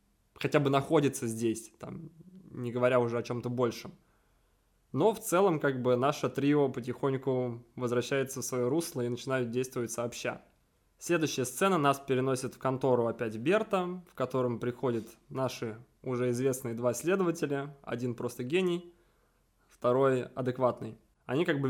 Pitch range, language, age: 120-145 Hz, Russian, 20-39